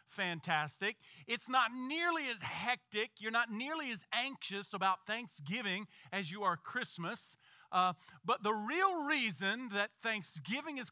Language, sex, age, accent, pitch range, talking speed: English, male, 40-59, American, 190-245 Hz, 135 wpm